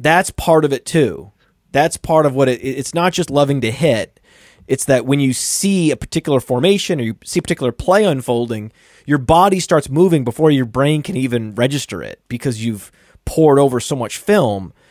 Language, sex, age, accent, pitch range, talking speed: English, male, 30-49, American, 130-170 Hz, 195 wpm